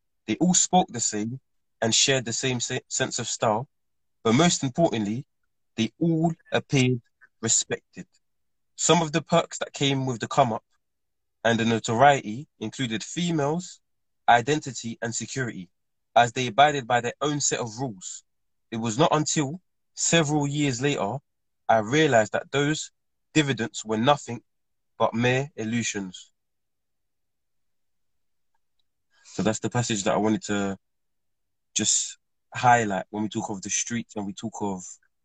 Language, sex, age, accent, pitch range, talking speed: English, male, 20-39, British, 110-135 Hz, 140 wpm